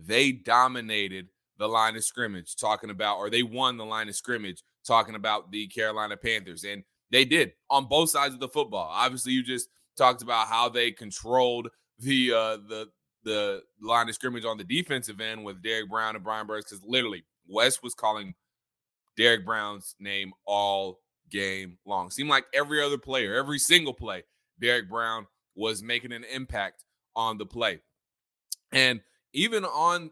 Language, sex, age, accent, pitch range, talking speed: English, male, 20-39, American, 115-180 Hz, 170 wpm